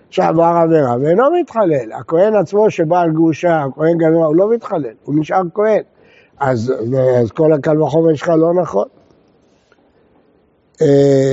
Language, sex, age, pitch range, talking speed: Hebrew, male, 60-79, 150-210 Hz, 115 wpm